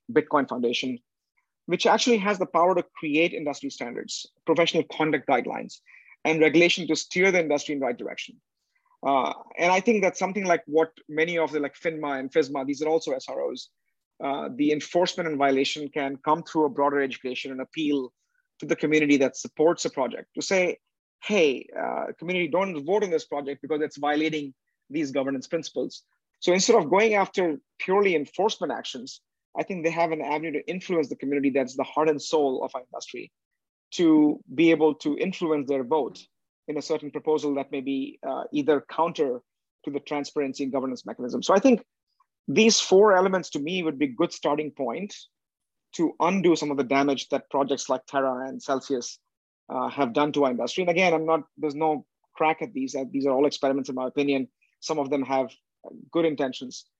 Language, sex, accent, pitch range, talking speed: English, male, Indian, 140-175 Hz, 190 wpm